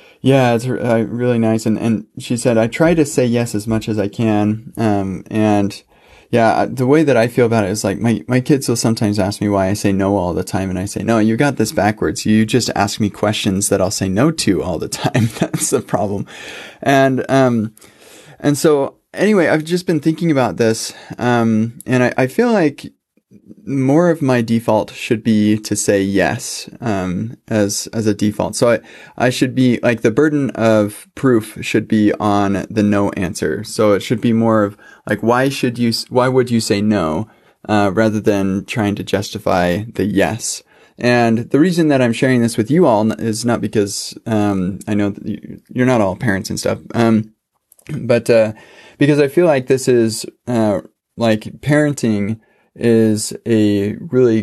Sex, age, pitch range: male, 20-39, 105-125 Hz